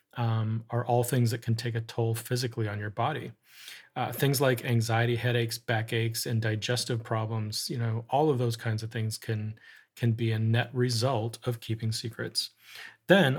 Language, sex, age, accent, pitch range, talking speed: English, male, 30-49, American, 115-130 Hz, 180 wpm